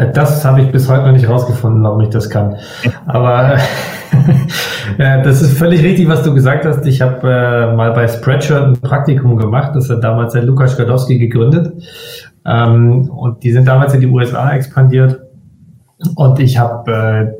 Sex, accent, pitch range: male, German, 115-135 Hz